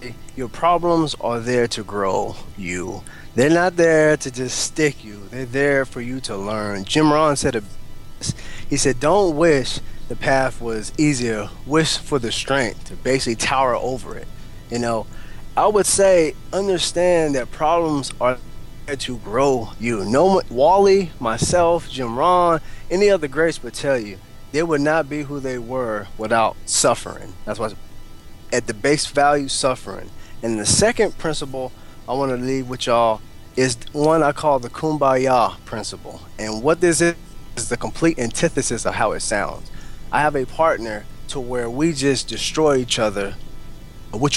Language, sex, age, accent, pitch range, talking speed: English, male, 20-39, American, 110-150 Hz, 170 wpm